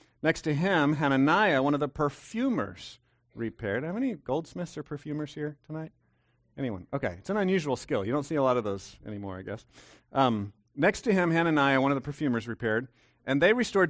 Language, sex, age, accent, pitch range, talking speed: English, male, 40-59, American, 115-150 Hz, 200 wpm